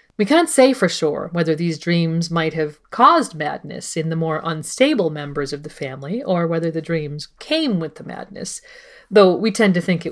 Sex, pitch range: female, 160-245 Hz